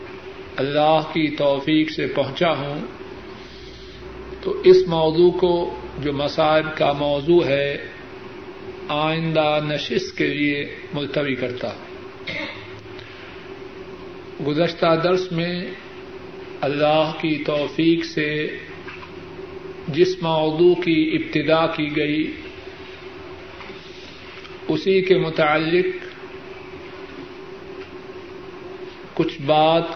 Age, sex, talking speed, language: 50-69, male, 80 wpm, Urdu